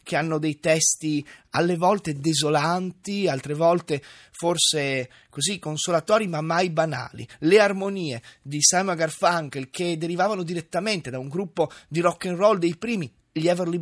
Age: 30-49